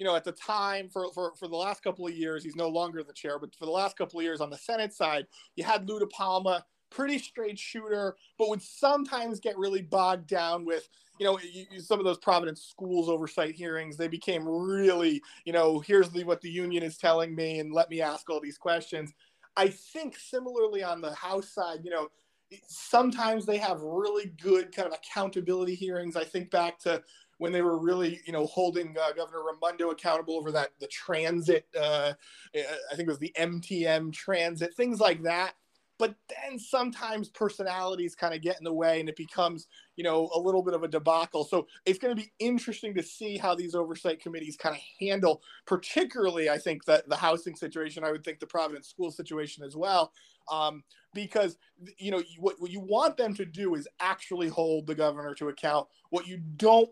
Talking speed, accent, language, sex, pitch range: 205 wpm, American, English, male, 160-195 Hz